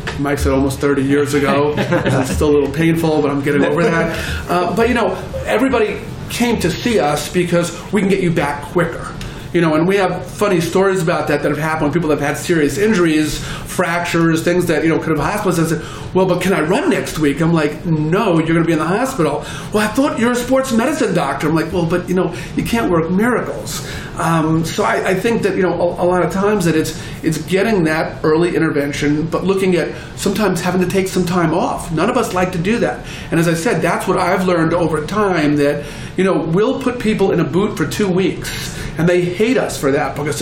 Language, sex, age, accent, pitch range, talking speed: English, male, 40-59, American, 155-185 Hz, 235 wpm